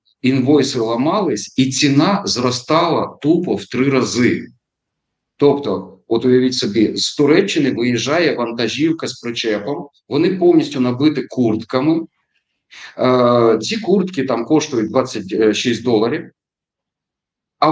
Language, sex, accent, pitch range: Ukrainian, male, native, 110-155 Hz